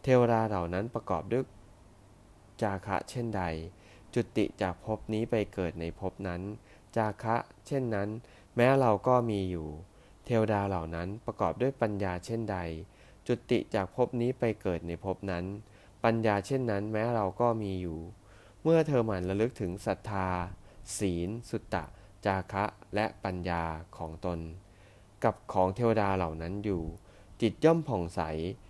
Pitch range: 90-115 Hz